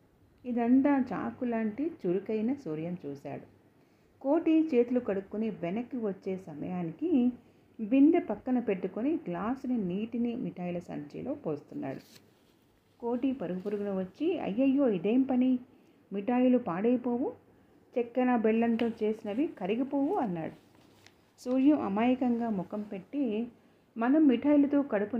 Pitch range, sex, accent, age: 185-255 Hz, female, native, 40-59